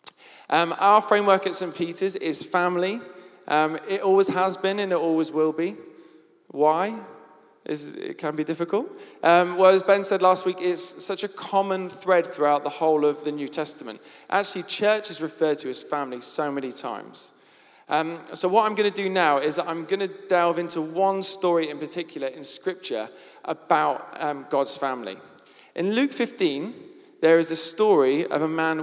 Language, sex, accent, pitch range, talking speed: English, male, British, 150-195 Hz, 180 wpm